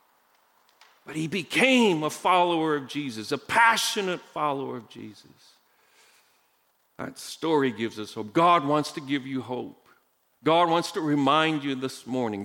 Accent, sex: American, male